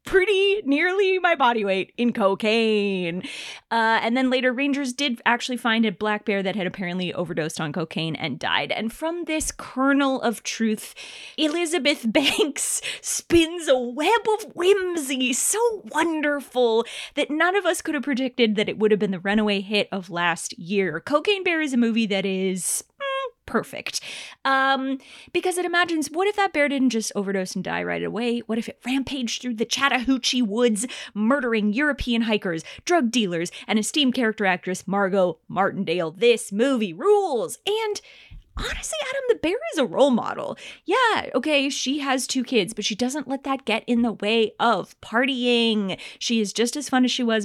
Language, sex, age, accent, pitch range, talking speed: English, female, 20-39, American, 215-310 Hz, 175 wpm